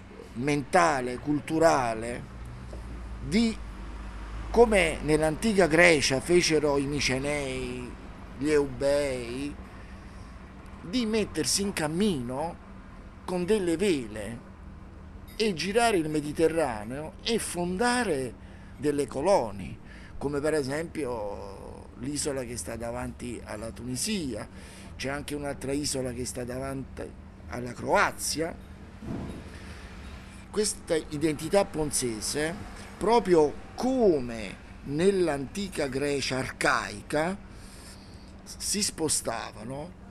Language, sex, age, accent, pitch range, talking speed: Italian, male, 50-69, native, 100-165 Hz, 80 wpm